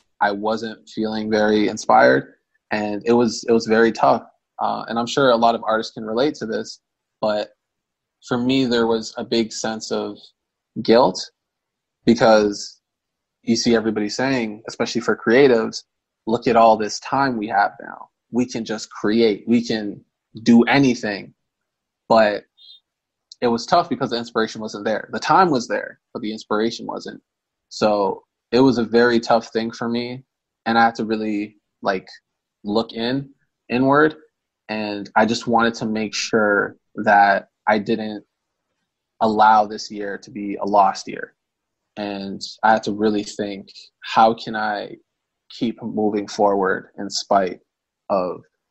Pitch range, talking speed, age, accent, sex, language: 105-120 Hz, 155 wpm, 20-39, American, male, English